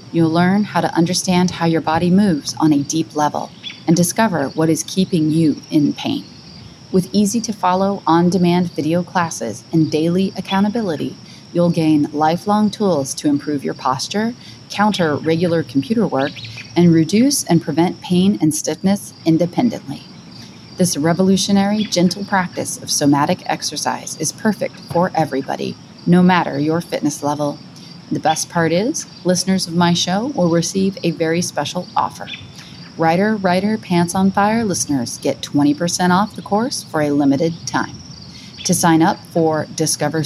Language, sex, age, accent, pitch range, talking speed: English, female, 30-49, American, 155-195 Hz, 150 wpm